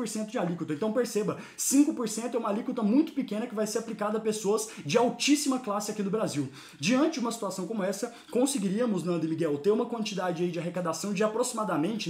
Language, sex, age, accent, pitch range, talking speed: Portuguese, male, 20-39, Brazilian, 175-220 Hz, 195 wpm